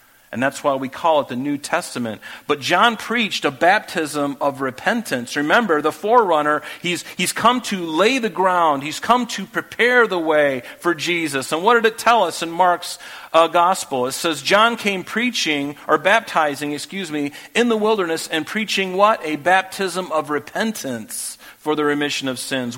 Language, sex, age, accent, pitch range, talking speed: English, male, 50-69, American, 145-195 Hz, 180 wpm